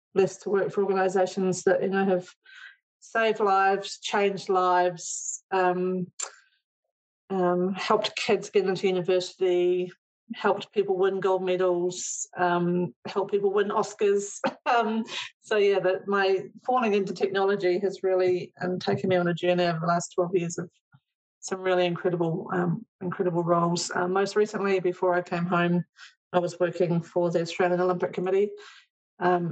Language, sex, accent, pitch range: English, female, British, 180-200 Hz